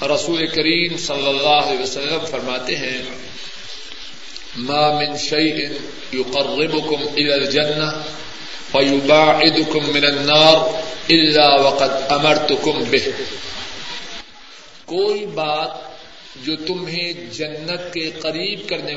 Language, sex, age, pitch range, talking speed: Urdu, male, 50-69, 150-185 Hz, 90 wpm